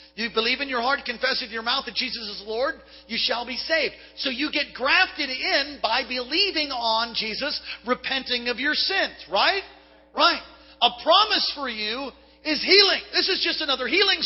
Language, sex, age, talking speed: English, male, 40-59, 180 wpm